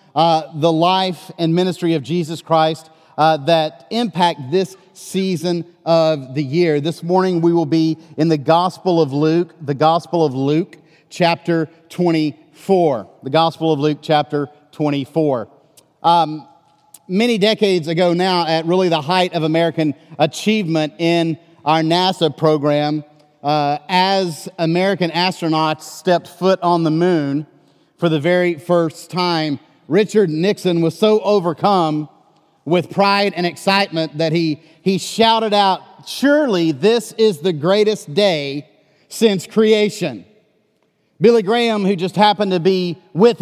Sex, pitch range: male, 160-190 Hz